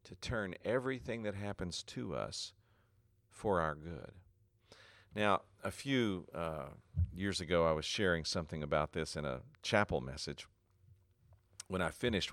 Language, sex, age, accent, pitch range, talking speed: English, male, 50-69, American, 90-110 Hz, 140 wpm